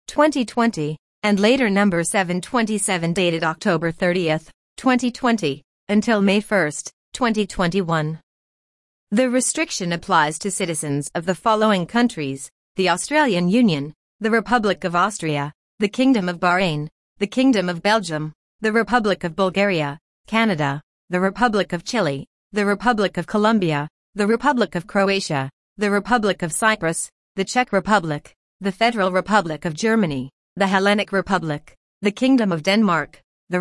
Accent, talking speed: American, 130 wpm